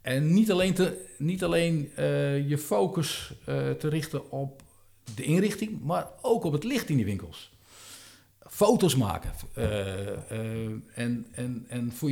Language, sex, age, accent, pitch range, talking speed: Dutch, male, 50-69, Dutch, 110-155 Hz, 155 wpm